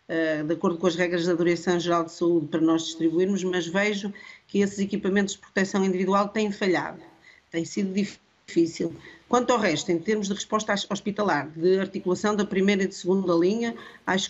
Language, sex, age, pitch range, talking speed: Portuguese, female, 50-69, 170-205 Hz, 190 wpm